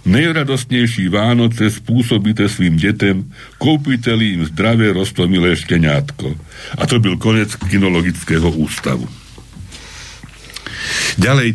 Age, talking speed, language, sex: 60-79, 90 wpm, Slovak, male